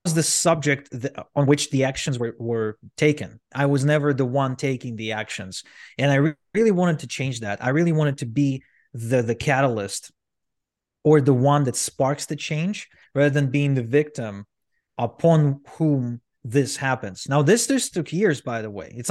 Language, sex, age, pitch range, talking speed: English, male, 30-49, 115-145 Hz, 180 wpm